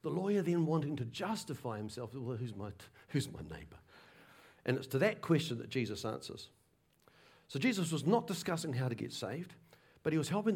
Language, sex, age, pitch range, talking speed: English, male, 50-69, 115-165 Hz, 200 wpm